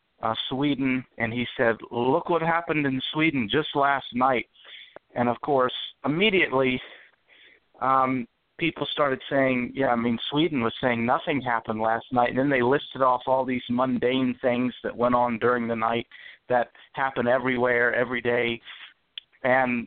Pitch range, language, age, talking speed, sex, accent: 115-135 Hz, English, 50-69, 155 wpm, male, American